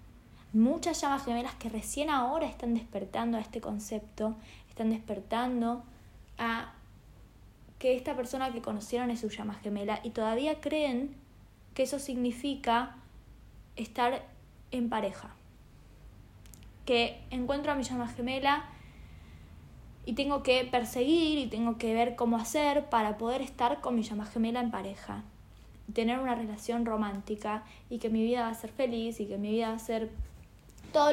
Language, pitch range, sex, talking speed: Spanish, 215-265 Hz, female, 150 wpm